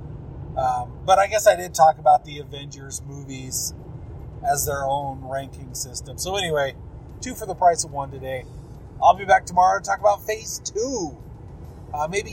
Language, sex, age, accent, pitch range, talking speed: English, male, 30-49, American, 130-175 Hz, 170 wpm